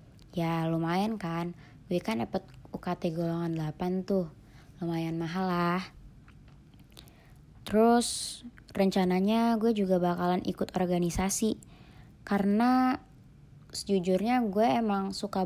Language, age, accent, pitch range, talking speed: Indonesian, 20-39, native, 175-195 Hz, 95 wpm